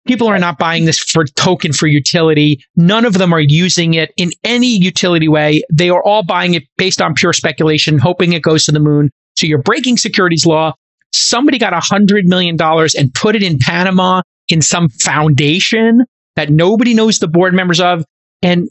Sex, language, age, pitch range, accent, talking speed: male, English, 40-59, 155-195 Hz, American, 195 wpm